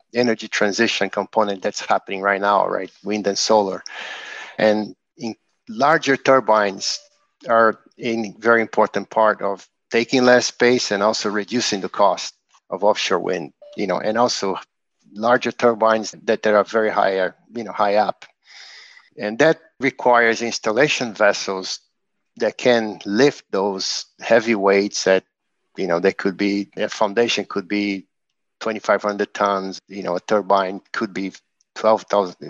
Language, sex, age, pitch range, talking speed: English, male, 50-69, 100-115 Hz, 140 wpm